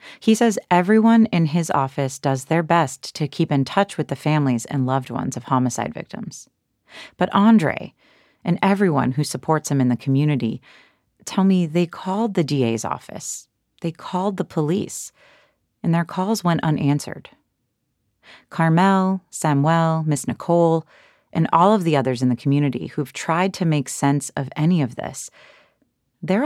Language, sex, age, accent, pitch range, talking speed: English, female, 30-49, American, 130-180 Hz, 160 wpm